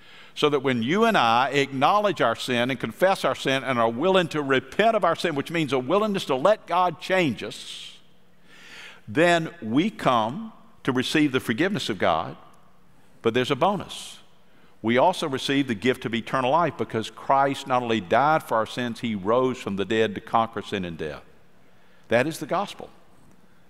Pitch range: 125-160 Hz